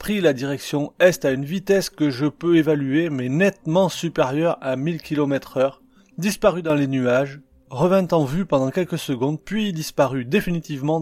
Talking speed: 170 wpm